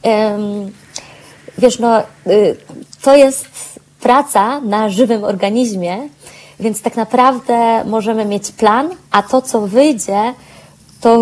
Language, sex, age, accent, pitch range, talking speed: Polish, female, 20-39, native, 215-255 Hz, 105 wpm